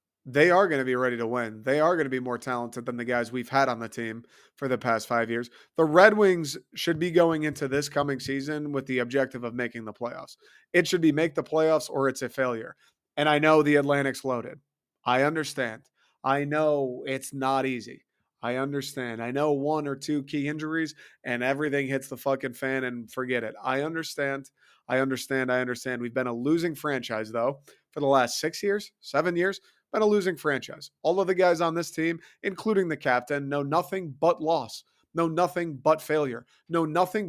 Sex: male